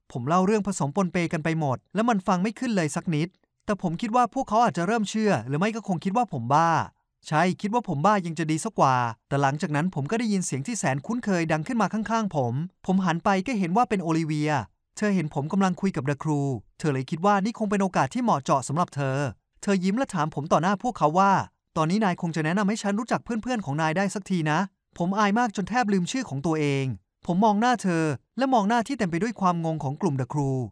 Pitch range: 150-205 Hz